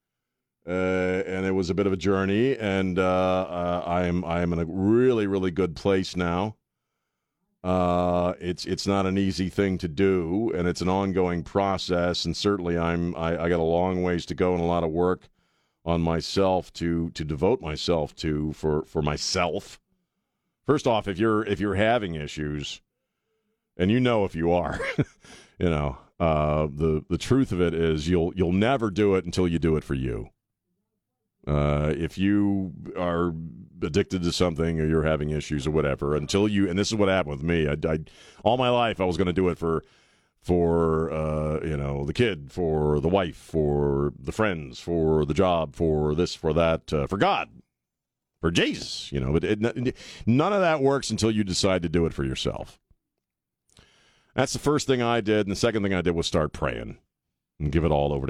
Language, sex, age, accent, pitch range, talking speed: English, male, 40-59, American, 80-95 Hz, 195 wpm